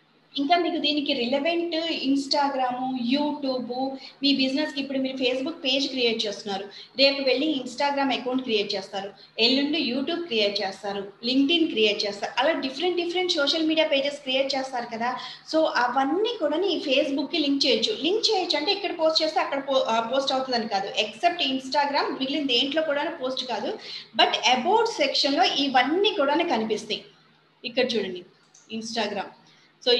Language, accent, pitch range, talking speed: Telugu, native, 225-295 Hz, 140 wpm